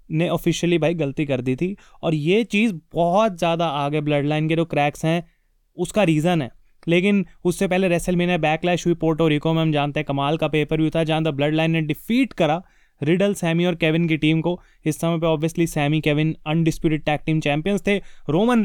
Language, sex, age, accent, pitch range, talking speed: Hindi, male, 20-39, native, 155-180 Hz, 210 wpm